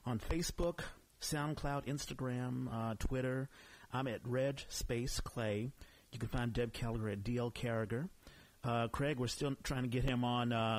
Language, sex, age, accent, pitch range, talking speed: English, male, 40-59, American, 105-130 Hz, 160 wpm